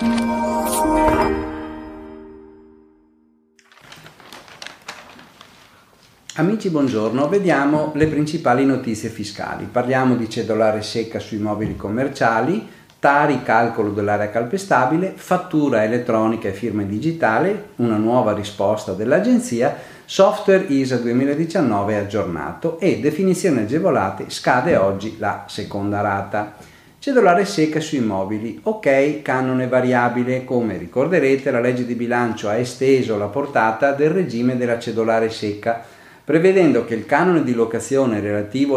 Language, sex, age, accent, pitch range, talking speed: Italian, male, 50-69, native, 105-140 Hz, 105 wpm